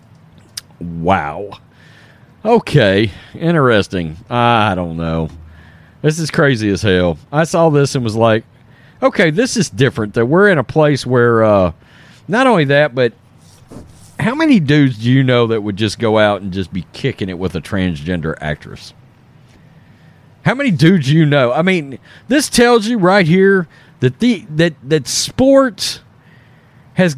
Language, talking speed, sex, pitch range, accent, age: English, 150 wpm, male, 115-155 Hz, American, 40-59